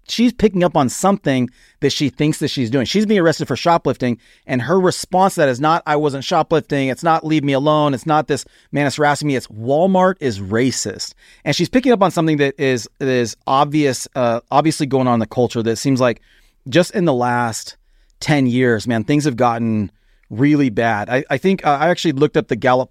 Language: English